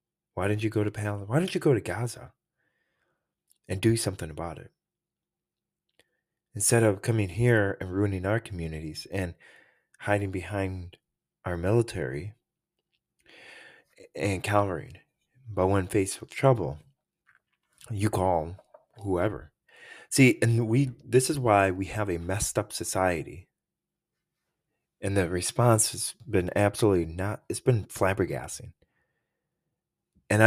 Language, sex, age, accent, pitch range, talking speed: English, male, 20-39, American, 90-115 Hz, 125 wpm